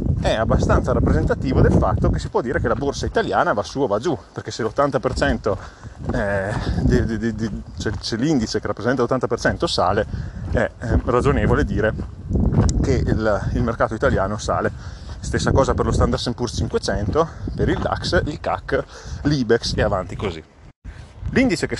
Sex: male